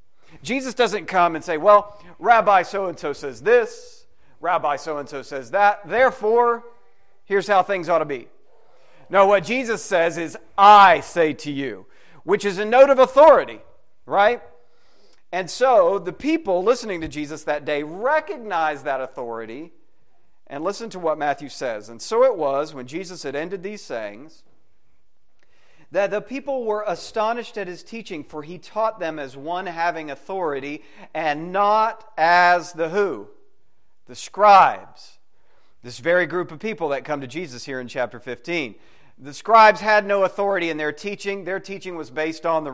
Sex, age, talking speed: male, 40-59, 160 wpm